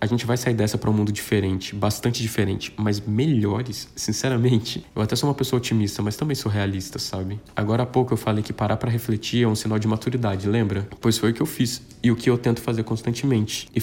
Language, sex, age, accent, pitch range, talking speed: Portuguese, male, 20-39, Brazilian, 105-120 Hz, 235 wpm